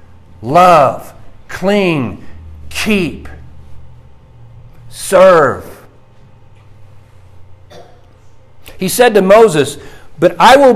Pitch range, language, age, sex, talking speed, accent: 130-210 Hz, English, 50-69, male, 60 wpm, American